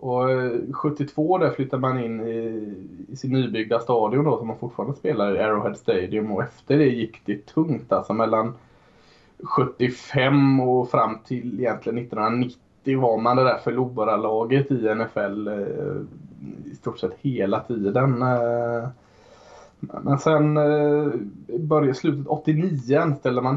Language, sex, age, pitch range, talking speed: Swedish, male, 20-39, 115-130 Hz, 135 wpm